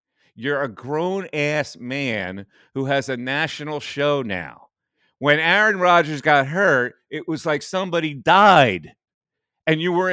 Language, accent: English, American